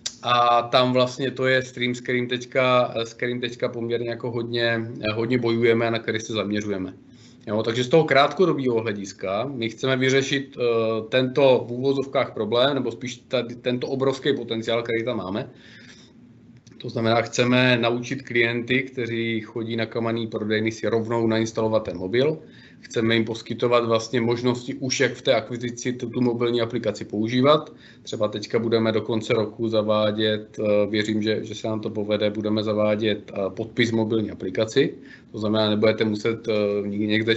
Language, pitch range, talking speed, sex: Czech, 110-120 Hz, 150 wpm, male